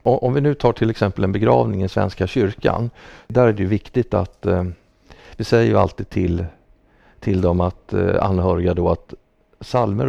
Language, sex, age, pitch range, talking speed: Swedish, male, 50-69, 90-105 Hz, 185 wpm